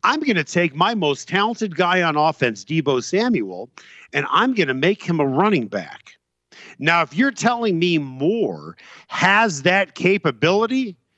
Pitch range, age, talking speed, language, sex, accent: 130-185 Hz, 50-69, 160 wpm, English, male, American